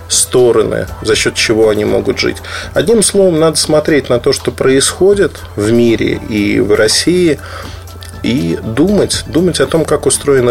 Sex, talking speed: male, 155 wpm